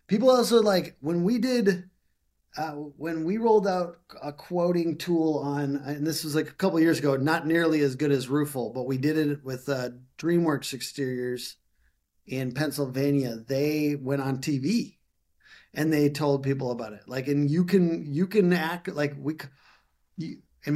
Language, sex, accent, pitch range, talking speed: English, male, American, 130-160 Hz, 175 wpm